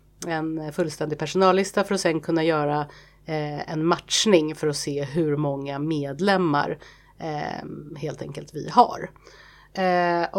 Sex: female